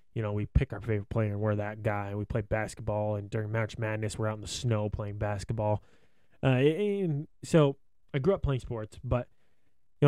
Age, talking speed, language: 20-39, 210 wpm, English